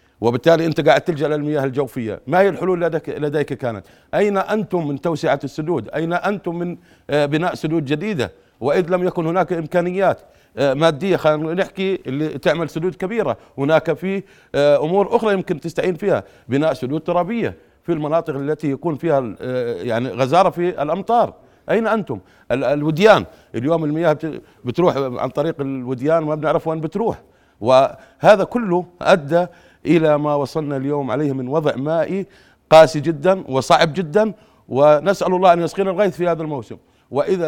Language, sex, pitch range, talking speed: Arabic, male, 140-180 Hz, 145 wpm